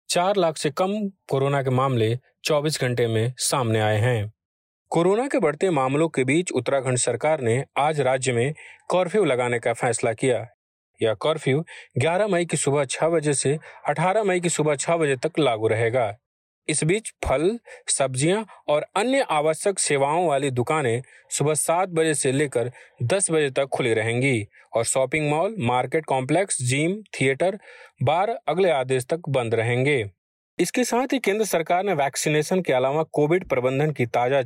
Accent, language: native, Hindi